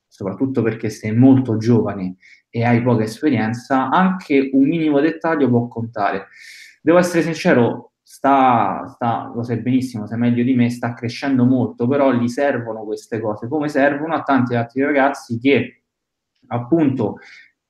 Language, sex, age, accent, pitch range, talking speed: Italian, male, 20-39, native, 120-155 Hz, 145 wpm